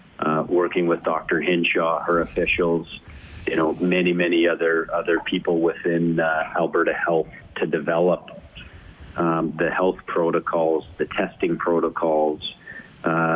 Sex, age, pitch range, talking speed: male, 40-59, 80-90 Hz, 125 wpm